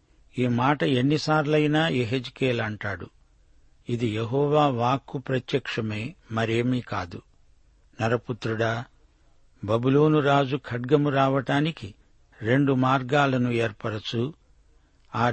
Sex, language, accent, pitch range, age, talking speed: male, Telugu, native, 110-145 Hz, 60-79, 75 wpm